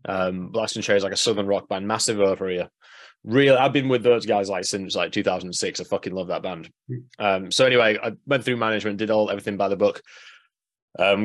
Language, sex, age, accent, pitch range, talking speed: English, male, 20-39, British, 100-130 Hz, 225 wpm